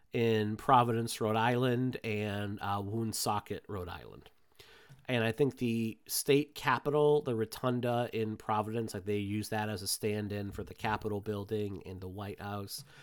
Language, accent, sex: English, American, male